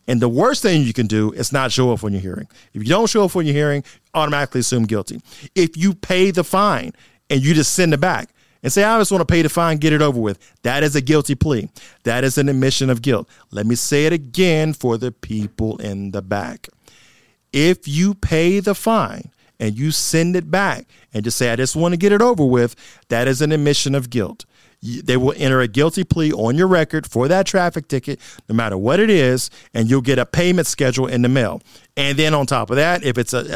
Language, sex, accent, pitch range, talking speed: English, male, American, 120-160 Hz, 240 wpm